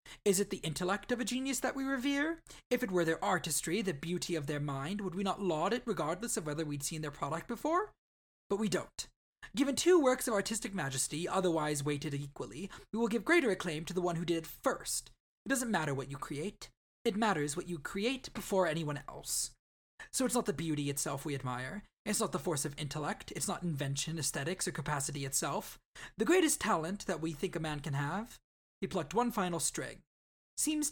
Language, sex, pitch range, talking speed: English, male, 155-210 Hz, 210 wpm